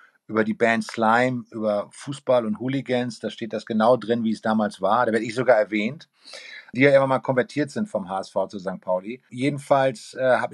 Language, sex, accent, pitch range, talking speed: German, male, German, 110-135 Hz, 205 wpm